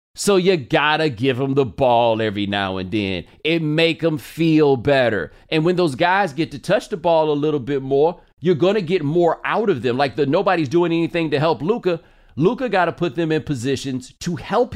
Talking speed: 225 wpm